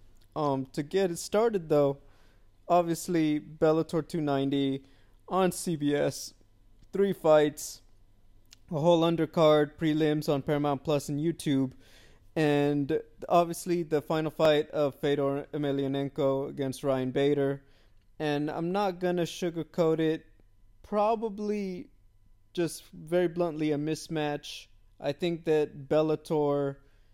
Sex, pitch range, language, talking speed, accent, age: male, 135-165 Hz, English, 110 wpm, American, 20-39